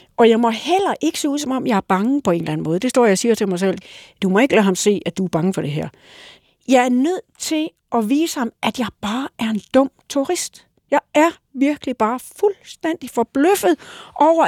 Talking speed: 240 wpm